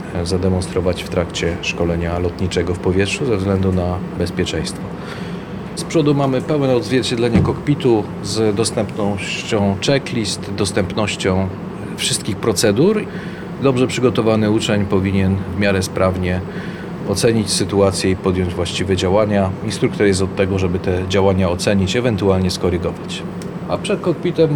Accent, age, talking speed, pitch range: native, 40-59, 120 wpm, 95-110 Hz